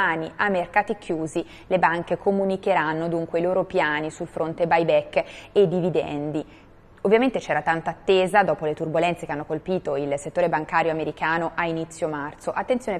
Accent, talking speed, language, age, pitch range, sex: native, 150 wpm, Italian, 20-39, 165-205 Hz, female